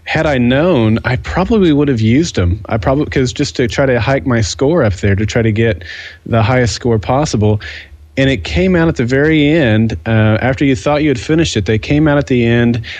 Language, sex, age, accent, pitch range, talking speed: English, male, 30-49, American, 105-130 Hz, 235 wpm